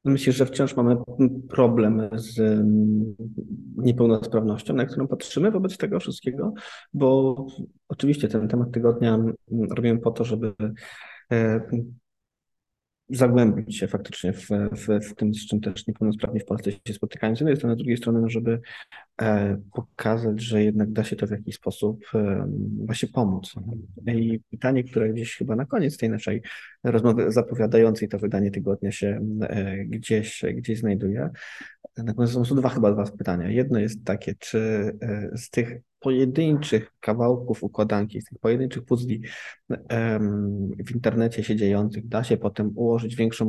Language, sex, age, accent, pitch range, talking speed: Polish, male, 20-39, native, 105-120 Hz, 140 wpm